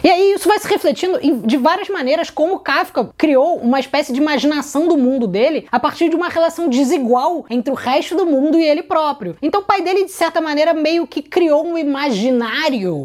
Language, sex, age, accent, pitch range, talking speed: Portuguese, female, 20-39, Brazilian, 220-320 Hz, 210 wpm